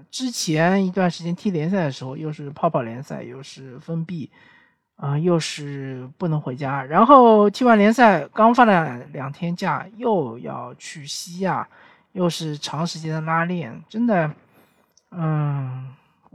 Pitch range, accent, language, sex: 145-190 Hz, native, Chinese, male